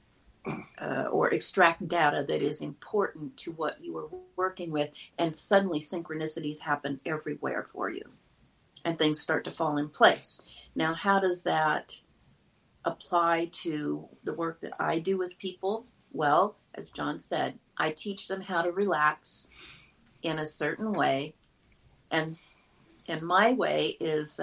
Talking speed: 145 wpm